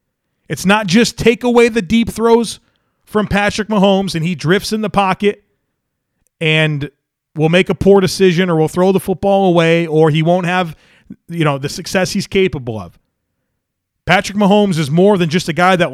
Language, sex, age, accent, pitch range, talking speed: English, male, 30-49, American, 160-200 Hz, 185 wpm